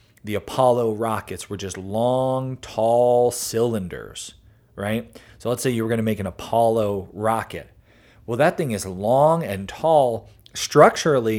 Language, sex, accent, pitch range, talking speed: English, male, American, 105-125 Hz, 150 wpm